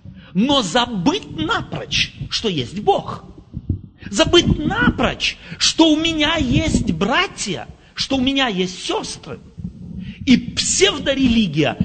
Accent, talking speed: native, 100 wpm